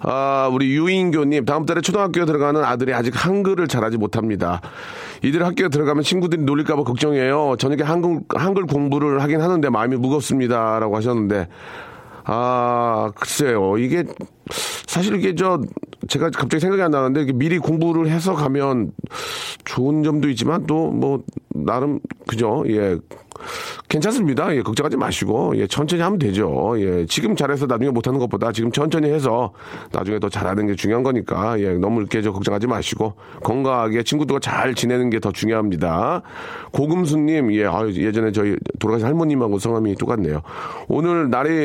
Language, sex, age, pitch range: Korean, male, 40-59, 115-150 Hz